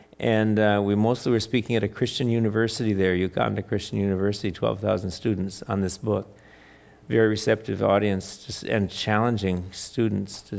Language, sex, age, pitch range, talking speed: English, male, 50-69, 100-115 Hz, 155 wpm